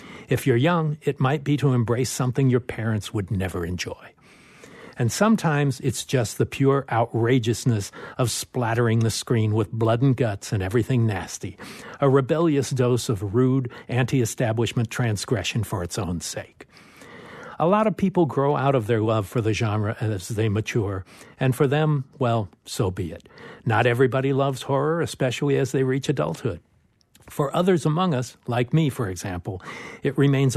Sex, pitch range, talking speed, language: male, 110-135 Hz, 165 wpm, English